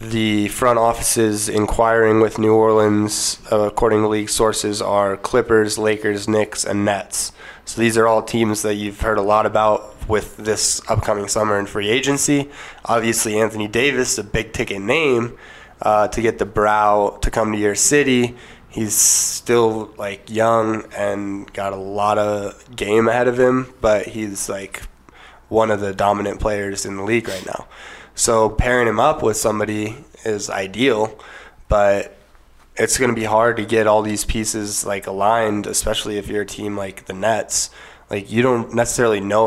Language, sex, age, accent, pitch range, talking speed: English, male, 20-39, American, 100-115 Hz, 170 wpm